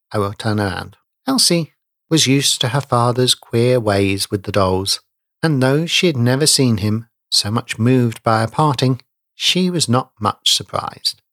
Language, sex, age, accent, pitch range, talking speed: English, male, 50-69, British, 105-140 Hz, 175 wpm